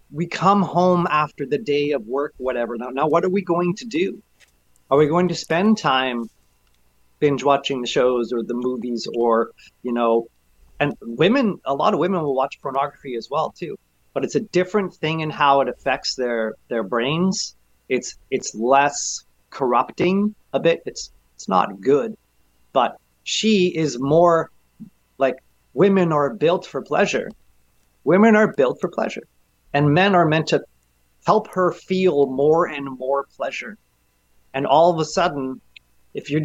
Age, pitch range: 30-49, 120-175 Hz